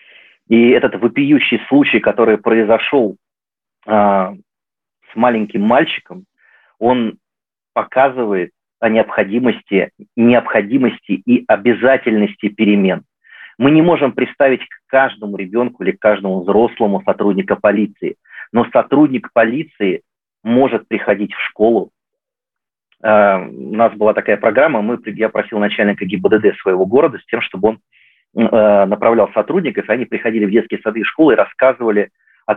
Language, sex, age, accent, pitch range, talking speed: Russian, male, 30-49, native, 105-135 Hz, 125 wpm